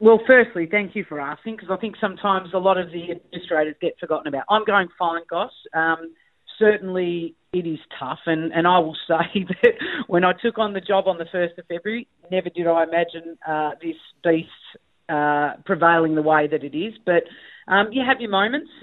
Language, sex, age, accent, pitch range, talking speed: English, female, 40-59, Australian, 150-180 Hz, 200 wpm